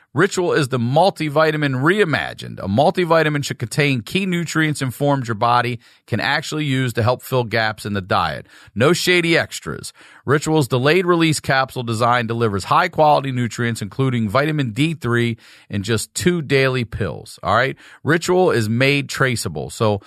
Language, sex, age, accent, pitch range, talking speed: English, male, 40-59, American, 115-150 Hz, 155 wpm